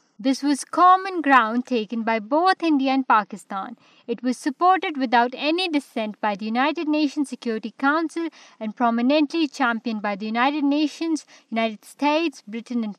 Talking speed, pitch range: 155 wpm, 230-290 Hz